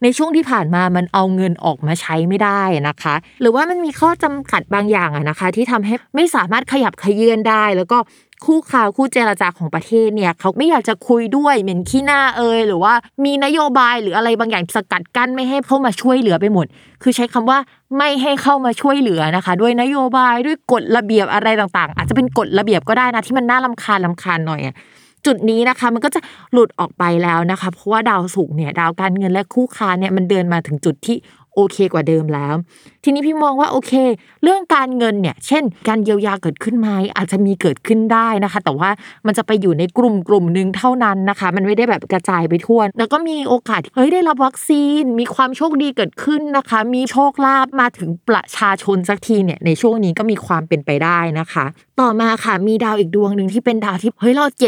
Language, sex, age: Thai, female, 20-39